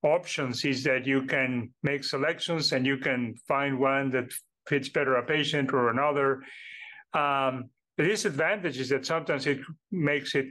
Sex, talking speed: male, 160 wpm